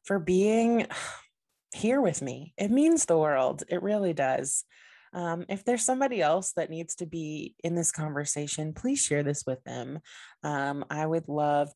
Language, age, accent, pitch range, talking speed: English, 20-39, American, 150-175 Hz, 170 wpm